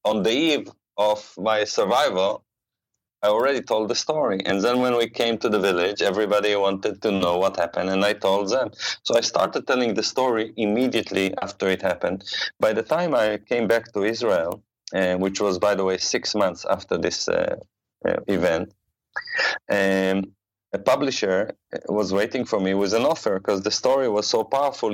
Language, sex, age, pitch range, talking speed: English, male, 30-49, 95-105 Hz, 180 wpm